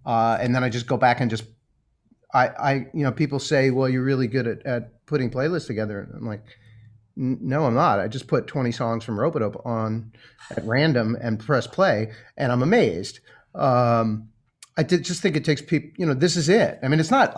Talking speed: 220 wpm